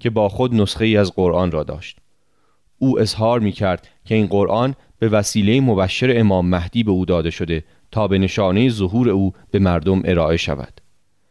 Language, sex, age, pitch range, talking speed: Persian, male, 30-49, 90-115 Hz, 175 wpm